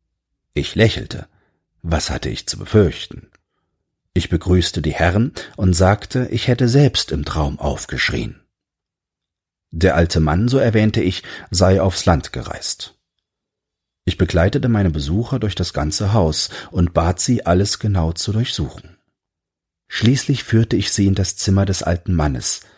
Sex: male